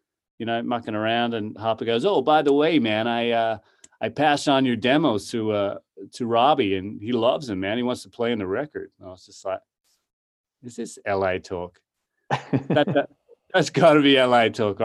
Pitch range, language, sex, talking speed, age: 105-135 Hz, English, male, 205 wpm, 30-49